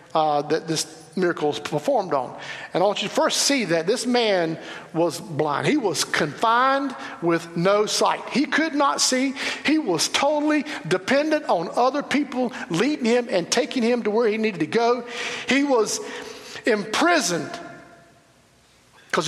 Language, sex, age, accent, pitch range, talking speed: English, male, 50-69, American, 135-210 Hz, 160 wpm